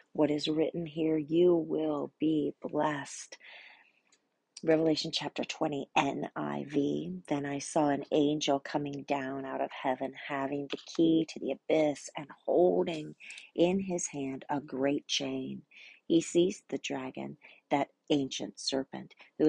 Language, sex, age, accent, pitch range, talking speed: English, female, 40-59, American, 140-165 Hz, 135 wpm